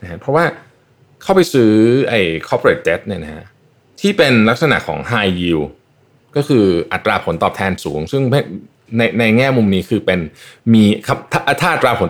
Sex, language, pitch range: male, Thai, 100-140 Hz